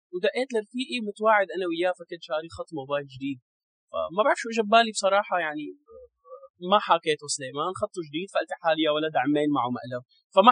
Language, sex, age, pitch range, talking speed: English, male, 20-39, 150-220 Hz, 160 wpm